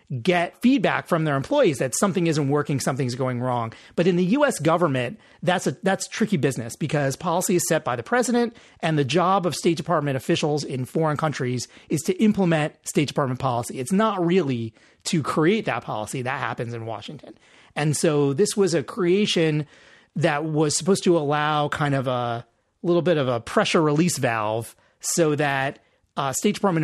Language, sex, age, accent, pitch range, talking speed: English, male, 30-49, American, 135-180 Hz, 185 wpm